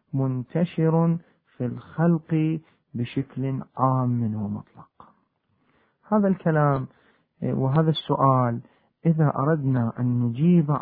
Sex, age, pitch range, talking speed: male, 40-59, 125-175 Hz, 80 wpm